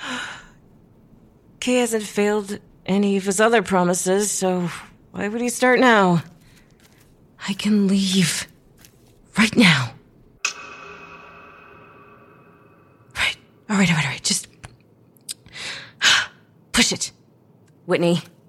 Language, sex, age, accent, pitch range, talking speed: English, female, 30-49, American, 180-250 Hz, 95 wpm